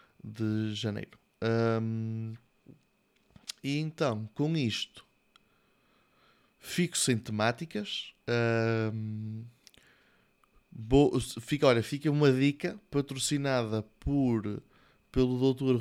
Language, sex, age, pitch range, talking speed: Portuguese, male, 20-39, 110-130 Hz, 80 wpm